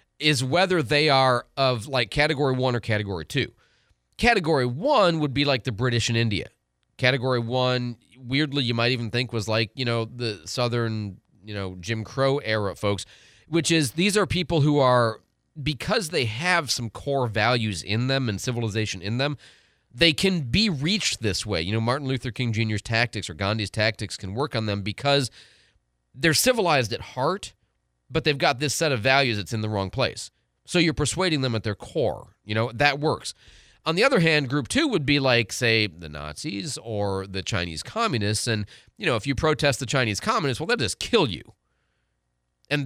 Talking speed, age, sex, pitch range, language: 190 wpm, 30-49, male, 110-145 Hz, English